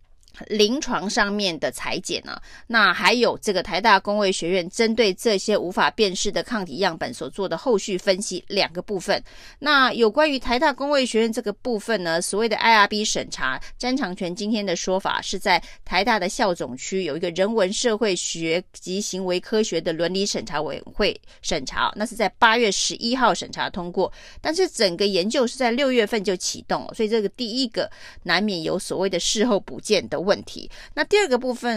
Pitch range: 185-240 Hz